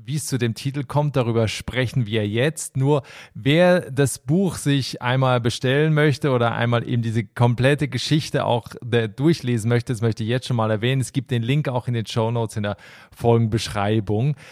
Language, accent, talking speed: German, German, 185 wpm